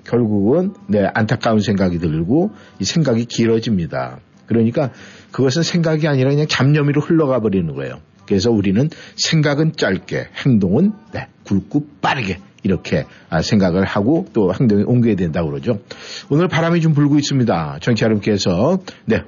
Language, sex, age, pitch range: Korean, male, 60-79, 110-165 Hz